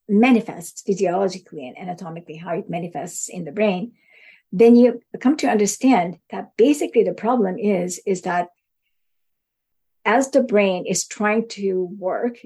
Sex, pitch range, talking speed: female, 180-225 Hz, 140 wpm